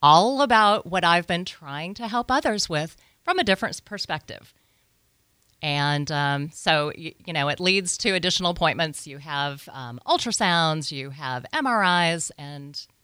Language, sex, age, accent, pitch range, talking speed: English, female, 40-59, American, 140-180 Hz, 150 wpm